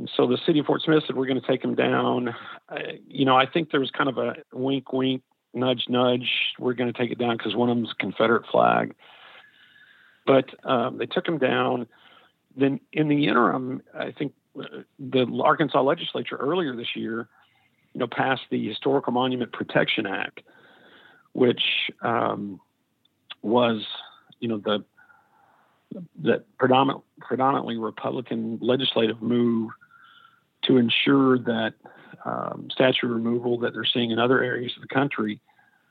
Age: 50-69